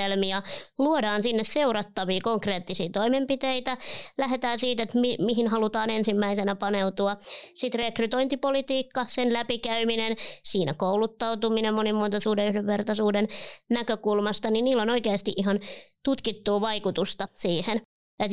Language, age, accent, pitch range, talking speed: Finnish, 20-39, native, 195-230 Hz, 105 wpm